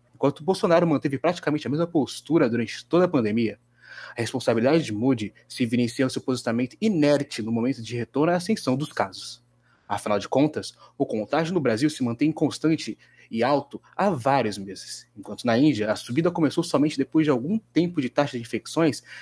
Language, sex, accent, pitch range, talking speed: Portuguese, male, Brazilian, 120-170 Hz, 180 wpm